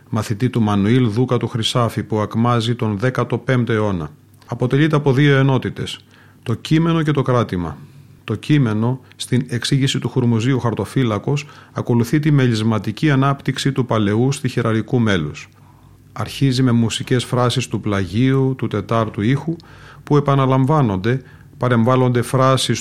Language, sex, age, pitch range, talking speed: Greek, male, 40-59, 110-130 Hz, 130 wpm